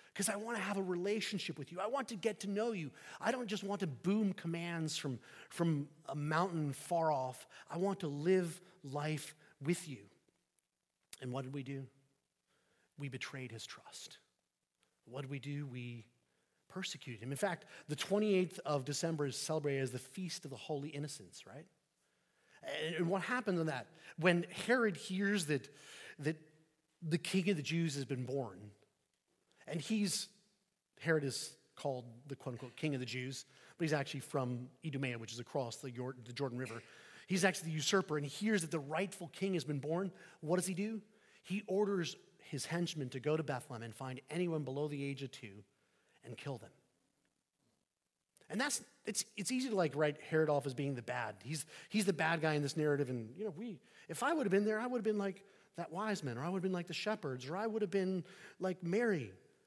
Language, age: English, 30-49